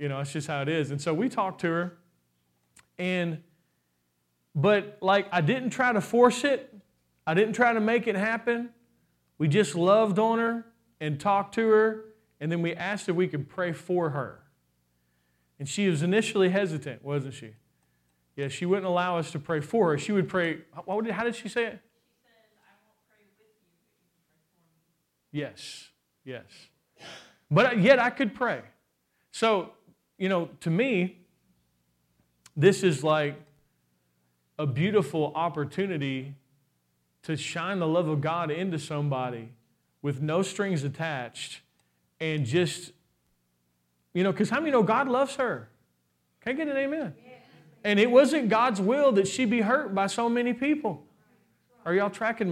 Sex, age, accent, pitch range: male, 40-59, American, 145-215 Hz